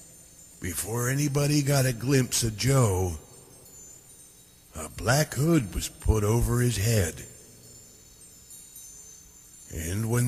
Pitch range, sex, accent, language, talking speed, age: 85-125 Hz, male, American, English, 100 wpm, 60-79